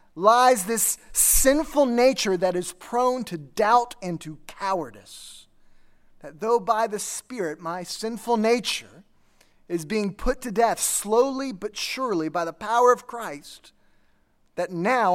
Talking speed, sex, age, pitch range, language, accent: 140 wpm, male, 20-39, 165-245 Hz, English, American